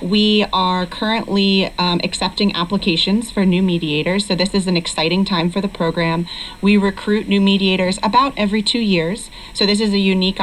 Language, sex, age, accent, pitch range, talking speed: English, female, 30-49, American, 175-200 Hz, 180 wpm